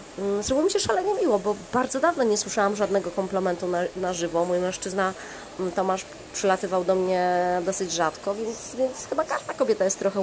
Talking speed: 175 wpm